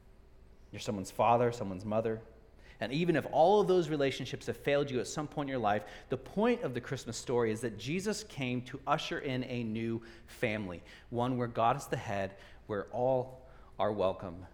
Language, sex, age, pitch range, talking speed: English, male, 40-59, 100-130 Hz, 190 wpm